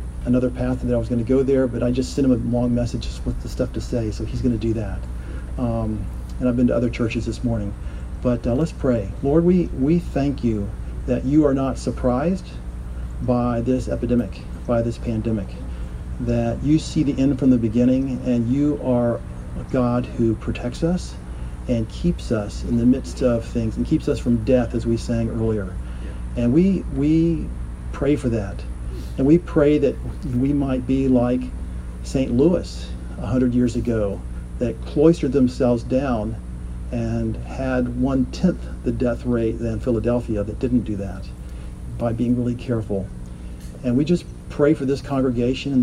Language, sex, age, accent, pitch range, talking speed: English, male, 40-59, American, 100-130 Hz, 180 wpm